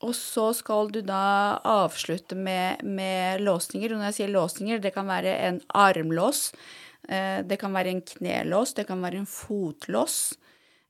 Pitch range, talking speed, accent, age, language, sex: 185-220 Hz, 150 wpm, native, 30-49, Swedish, female